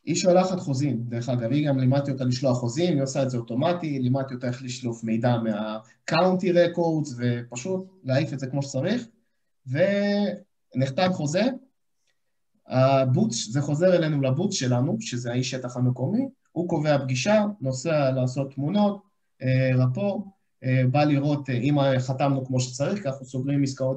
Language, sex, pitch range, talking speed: Hebrew, male, 125-160 Hz, 145 wpm